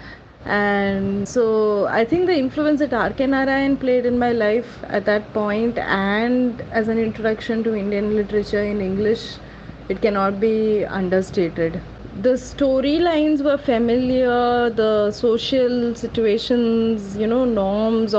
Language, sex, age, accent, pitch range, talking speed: English, female, 20-39, Indian, 200-245 Hz, 125 wpm